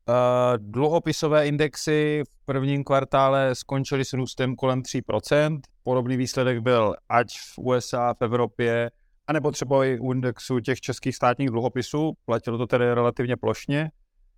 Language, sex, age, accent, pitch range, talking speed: Czech, male, 30-49, native, 120-145 Hz, 130 wpm